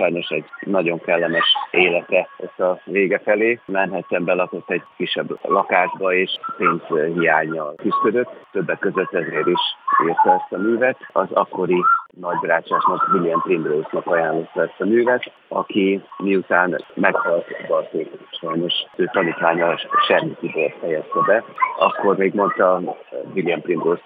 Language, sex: Hungarian, male